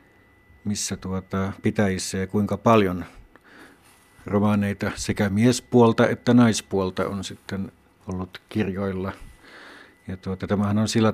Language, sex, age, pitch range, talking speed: Finnish, male, 60-79, 95-105 Hz, 100 wpm